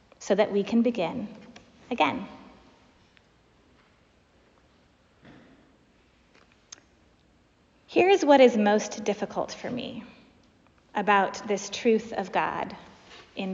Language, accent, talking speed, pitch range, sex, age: English, American, 85 wpm, 200-250 Hz, female, 30-49